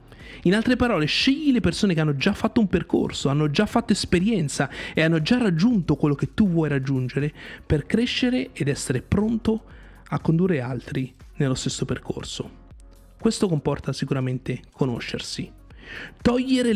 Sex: male